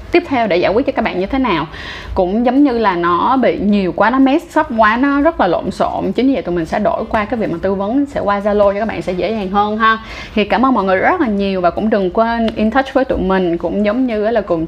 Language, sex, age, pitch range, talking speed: Vietnamese, female, 20-39, 200-245 Hz, 305 wpm